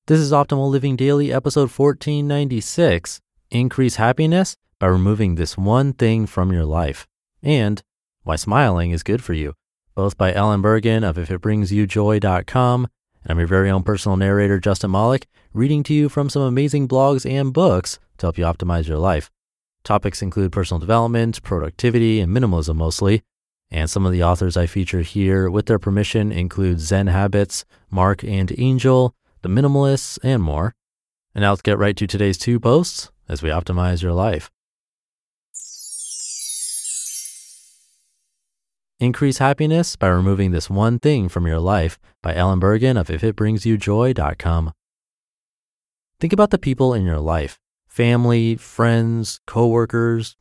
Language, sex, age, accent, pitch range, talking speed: English, male, 30-49, American, 90-120 Hz, 145 wpm